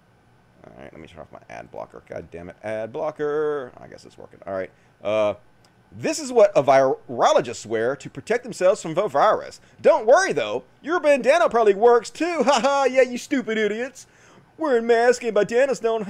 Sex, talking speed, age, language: male, 195 wpm, 40-59, English